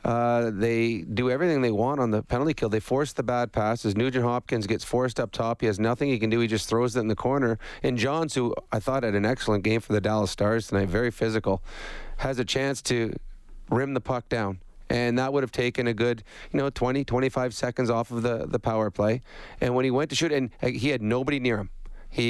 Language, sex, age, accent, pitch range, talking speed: English, male, 40-59, American, 110-130 Hz, 240 wpm